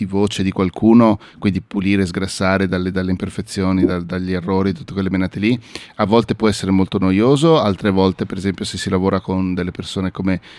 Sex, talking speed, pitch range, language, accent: male, 185 wpm, 95-110 Hz, Italian, native